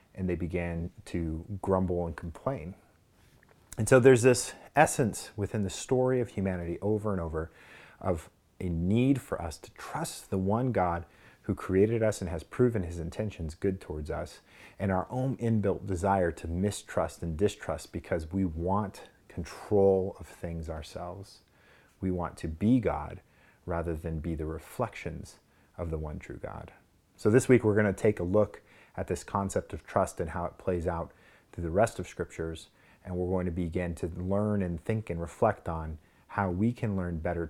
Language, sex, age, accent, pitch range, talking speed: English, male, 30-49, American, 85-105 Hz, 180 wpm